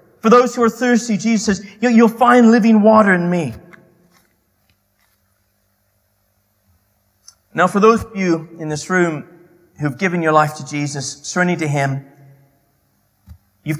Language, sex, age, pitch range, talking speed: English, male, 30-49, 145-230 Hz, 135 wpm